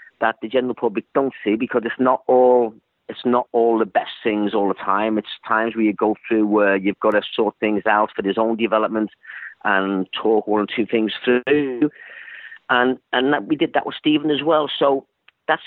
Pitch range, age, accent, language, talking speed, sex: 105-130 Hz, 40-59, British, English, 210 wpm, male